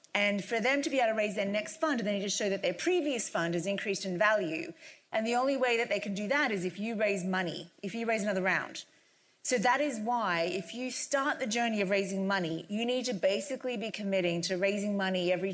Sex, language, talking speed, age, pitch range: female, English, 245 wpm, 30-49, 190-240 Hz